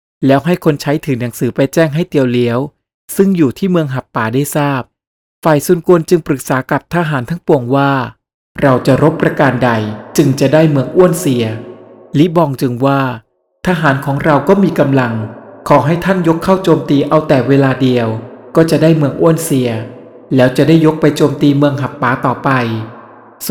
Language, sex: Thai, male